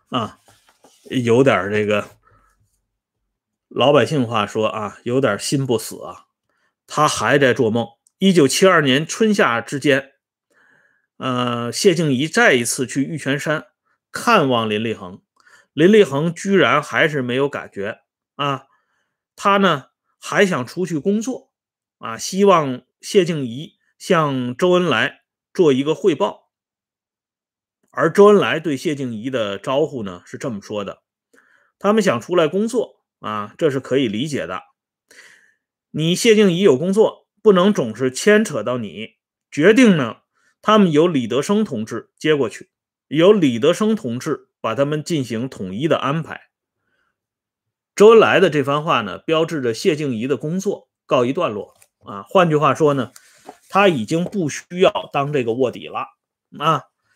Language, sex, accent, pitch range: Swedish, male, Chinese, 125-195 Hz